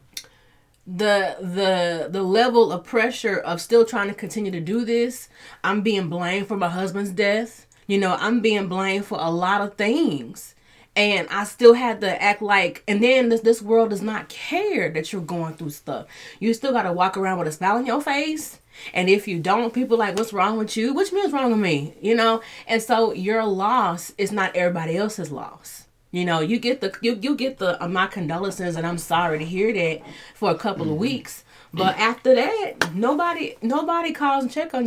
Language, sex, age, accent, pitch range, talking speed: English, female, 30-49, American, 185-240 Hz, 210 wpm